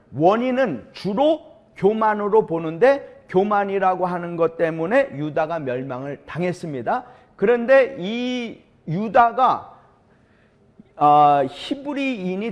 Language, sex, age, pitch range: Korean, male, 40-59, 170-245 Hz